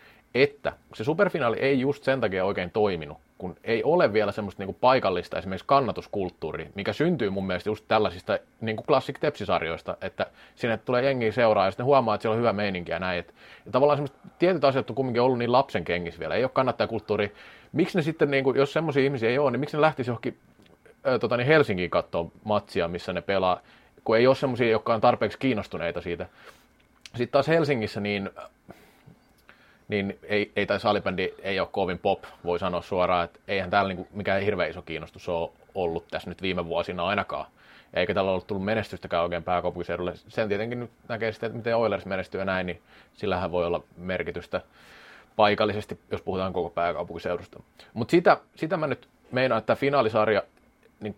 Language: Finnish